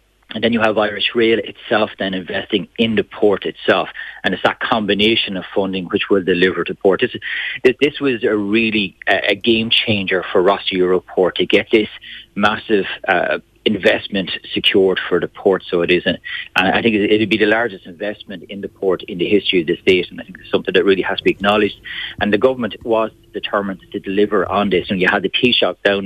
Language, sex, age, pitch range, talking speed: English, male, 40-59, 95-110 Hz, 215 wpm